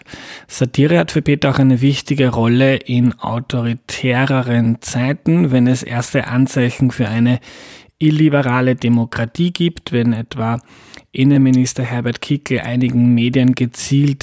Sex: male